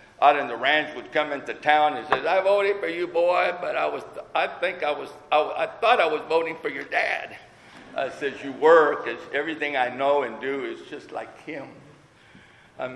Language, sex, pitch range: English, male, 115-135 Hz